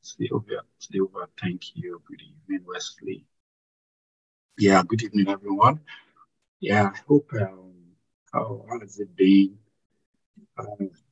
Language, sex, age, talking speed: English, male, 50-69, 120 wpm